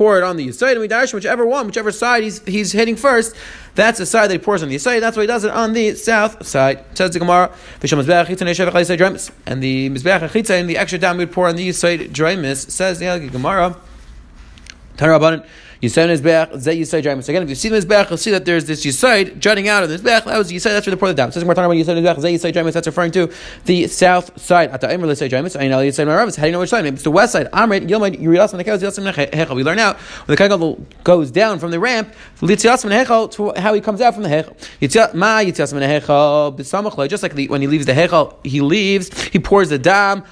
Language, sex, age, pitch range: English, male, 30-49, 160-215 Hz